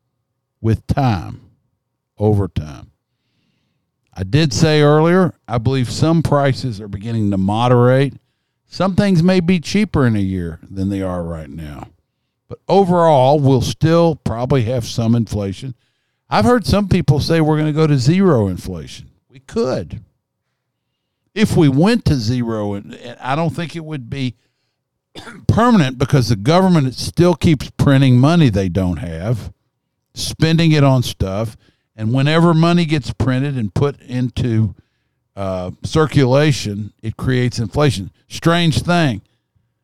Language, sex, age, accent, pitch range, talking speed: English, male, 50-69, American, 110-155 Hz, 140 wpm